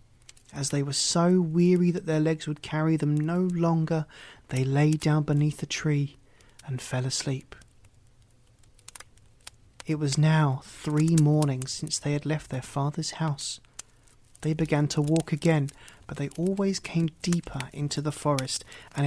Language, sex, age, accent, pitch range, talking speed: English, male, 30-49, British, 130-160 Hz, 150 wpm